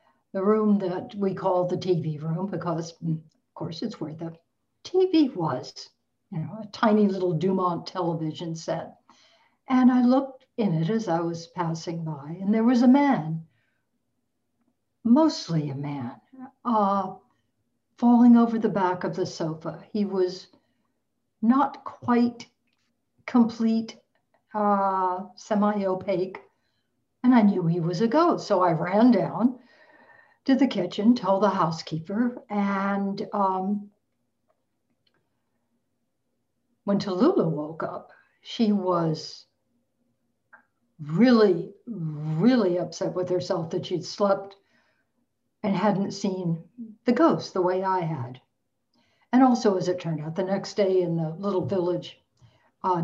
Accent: American